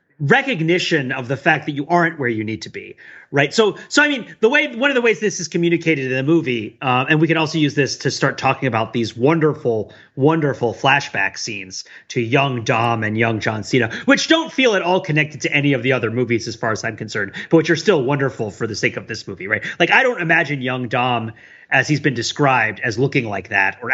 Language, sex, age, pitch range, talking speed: English, male, 30-49, 130-175 Hz, 240 wpm